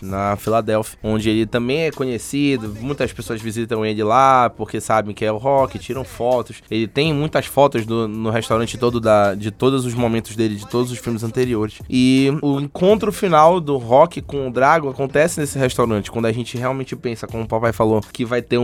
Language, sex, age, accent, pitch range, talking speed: Portuguese, male, 20-39, Brazilian, 115-150 Hz, 205 wpm